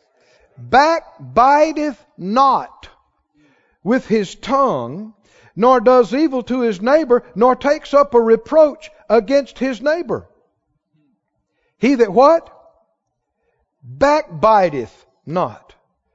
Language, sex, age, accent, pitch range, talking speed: English, male, 50-69, American, 160-260 Hz, 90 wpm